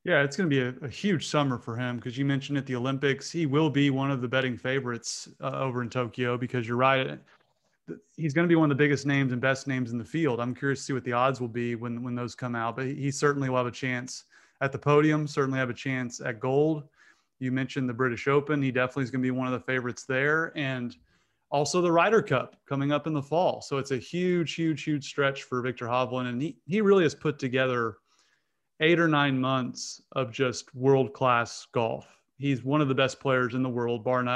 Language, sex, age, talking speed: English, male, 30-49, 240 wpm